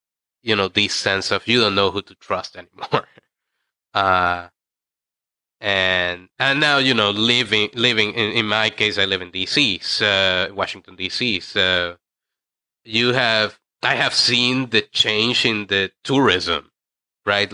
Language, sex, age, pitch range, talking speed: English, male, 30-49, 90-105 Hz, 150 wpm